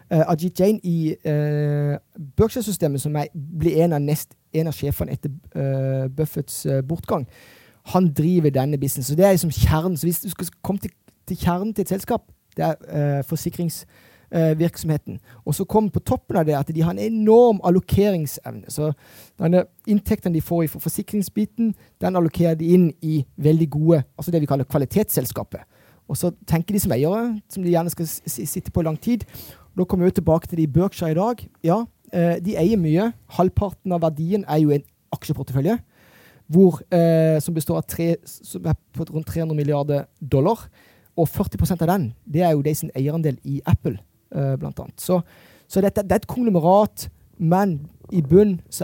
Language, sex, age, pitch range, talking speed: English, male, 30-49, 150-185 Hz, 185 wpm